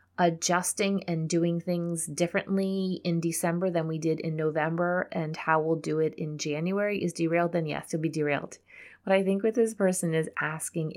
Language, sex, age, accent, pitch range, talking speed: English, female, 30-49, American, 160-195 Hz, 185 wpm